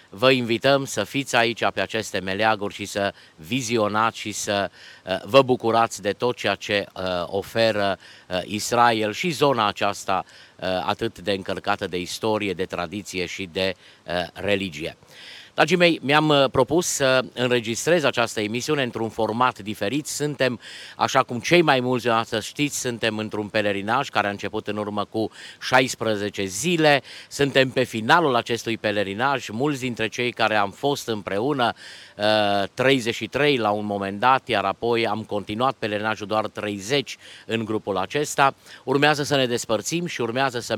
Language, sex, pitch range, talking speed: Romanian, male, 105-135 Hz, 145 wpm